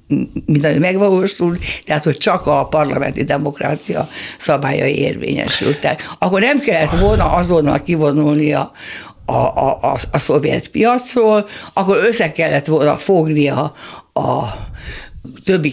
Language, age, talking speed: Hungarian, 60-79, 115 wpm